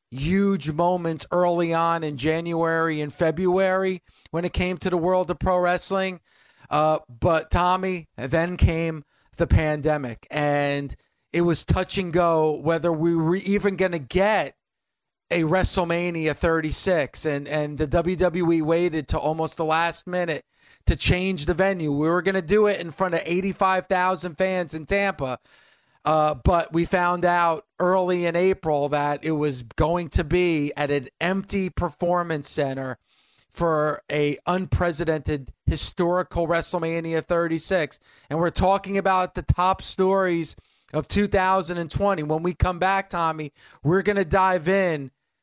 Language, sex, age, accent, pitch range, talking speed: English, male, 40-59, American, 155-185 Hz, 145 wpm